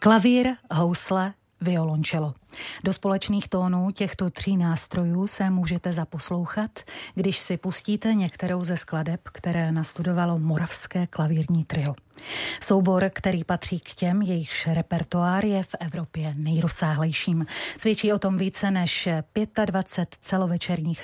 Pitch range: 160-190 Hz